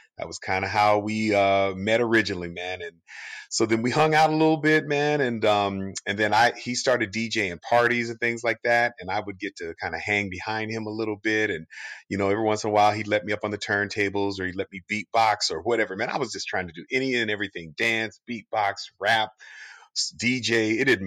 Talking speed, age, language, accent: 240 wpm, 40-59, English, American